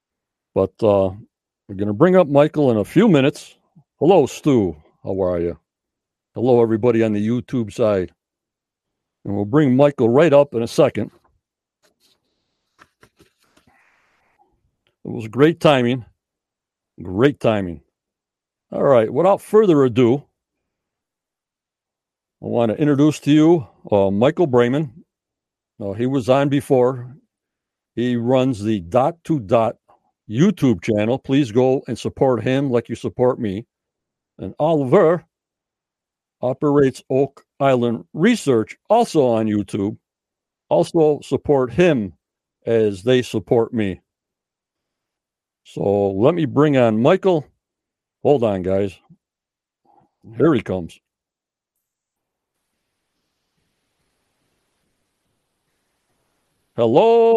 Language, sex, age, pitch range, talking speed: English, male, 60-79, 110-145 Hz, 110 wpm